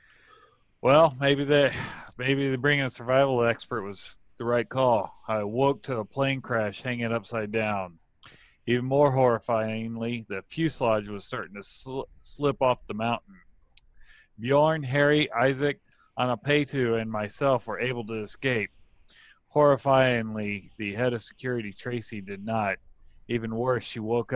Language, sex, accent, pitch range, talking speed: English, male, American, 100-130 Hz, 140 wpm